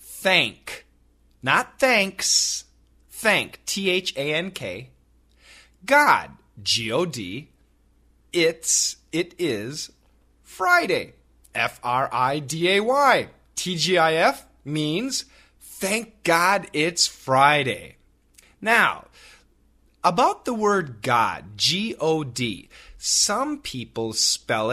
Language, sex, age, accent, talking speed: English, male, 30-49, American, 65 wpm